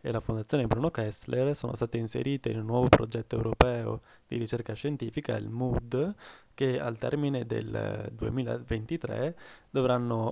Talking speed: 140 wpm